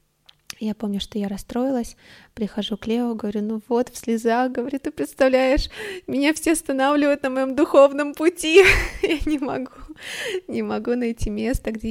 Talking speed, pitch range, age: 155 wpm, 205-240 Hz, 20-39